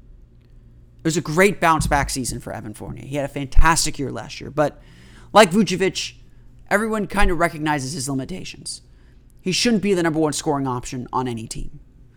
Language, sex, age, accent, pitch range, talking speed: English, male, 30-49, American, 120-165 Hz, 180 wpm